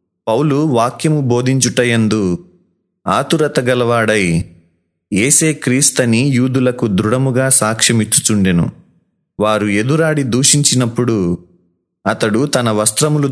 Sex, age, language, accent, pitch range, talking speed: male, 30-49, Telugu, native, 110-140 Hz, 70 wpm